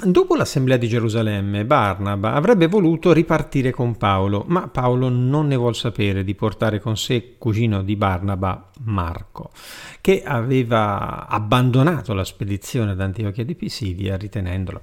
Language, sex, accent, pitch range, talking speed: Italian, male, native, 100-135 Hz, 140 wpm